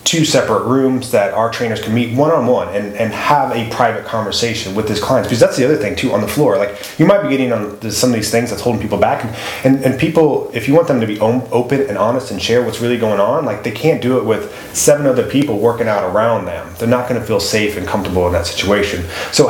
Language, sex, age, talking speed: English, male, 30-49, 265 wpm